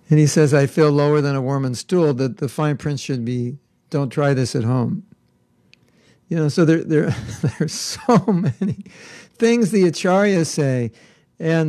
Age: 60-79